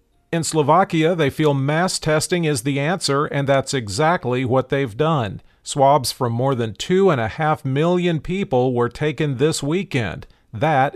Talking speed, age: 165 wpm, 40-59